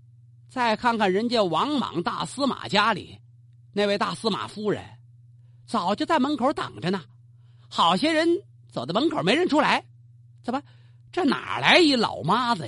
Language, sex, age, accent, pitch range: Chinese, male, 40-59, native, 120-200 Hz